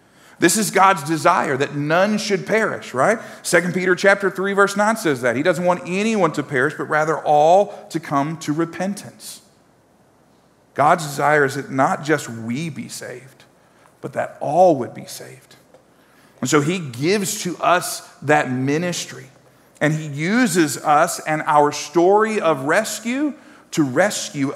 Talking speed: 155 wpm